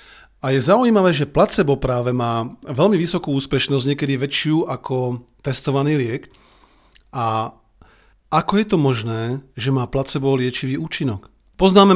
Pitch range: 125-165 Hz